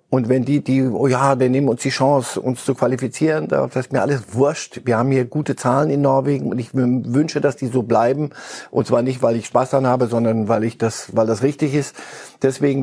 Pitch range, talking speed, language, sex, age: 115-140 Hz, 235 wpm, German, male, 50-69